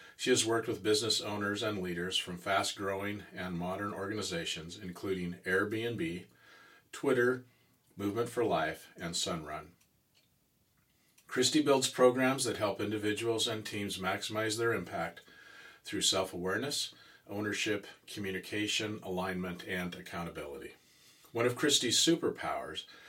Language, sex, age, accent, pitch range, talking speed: English, male, 50-69, American, 90-110 Hz, 110 wpm